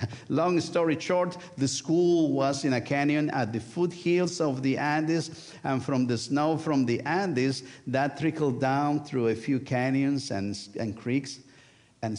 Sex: male